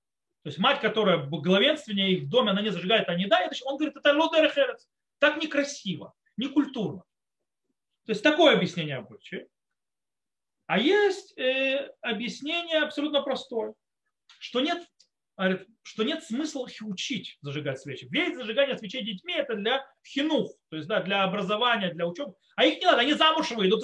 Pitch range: 175-280 Hz